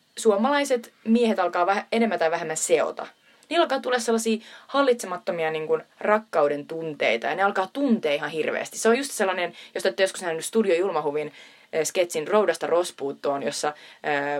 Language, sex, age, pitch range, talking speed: Finnish, female, 20-39, 160-235 Hz, 160 wpm